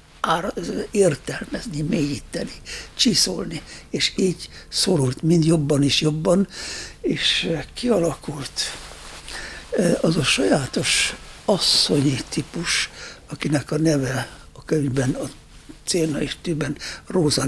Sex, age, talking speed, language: male, 60-79, 90 wpm, Hungarian